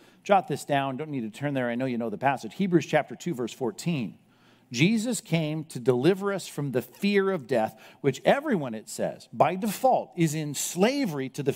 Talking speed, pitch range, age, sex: 210 wpm, 135-190 Hz, 50-69, male